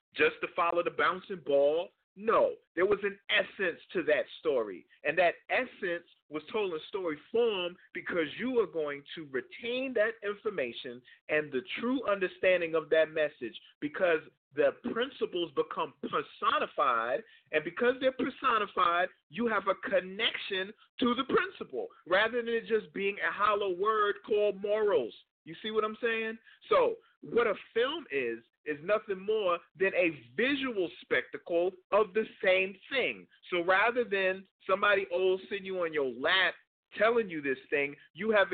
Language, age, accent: English, 40-59, American